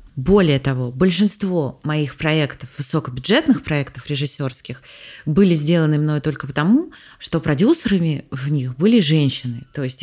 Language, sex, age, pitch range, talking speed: Russian, female, 30-49, 135-185 Hz, 125 wpm